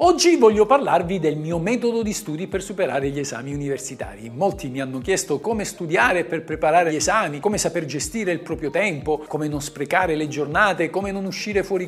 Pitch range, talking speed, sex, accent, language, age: 145-195 Hz, 190 wpm, male, native, Italian, 50-69